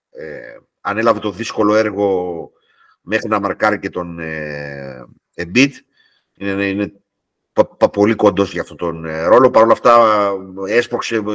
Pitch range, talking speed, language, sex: 100-125 Hz, 115 wpm, Greek, male